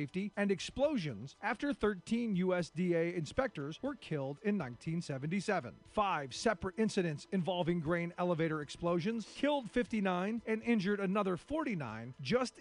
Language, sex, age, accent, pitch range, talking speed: English, male, 40-59, American, 170-230 Hz, 115 wpm